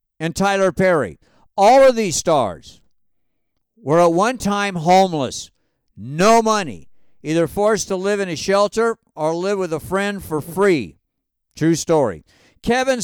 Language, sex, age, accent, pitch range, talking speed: English, male, 50-69, American, 165-225 Hz, 145 wpm